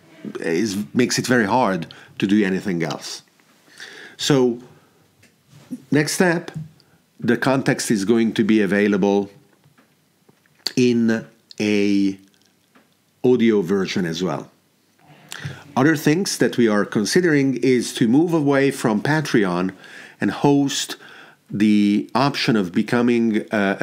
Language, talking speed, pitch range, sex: English, 110 wpm, 105-135 Hz, male